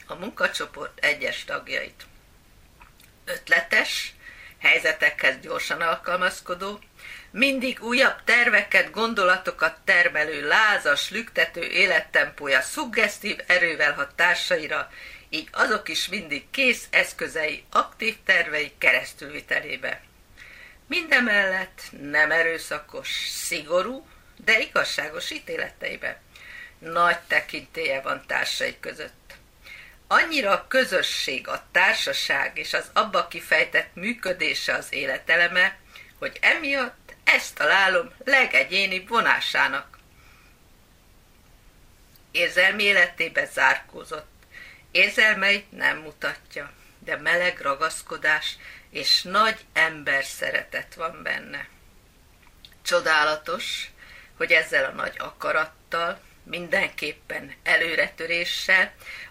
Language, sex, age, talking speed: Hungarian, female, 50-69, 85 wpm